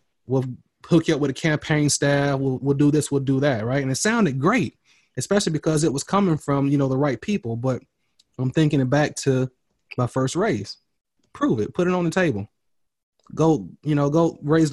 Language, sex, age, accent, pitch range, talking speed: English, male, 20-39, American, 130-160 Hz, 210 wpm